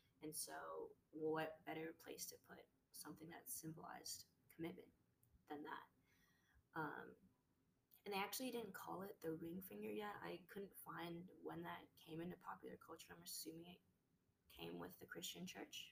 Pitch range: 155-210 Hz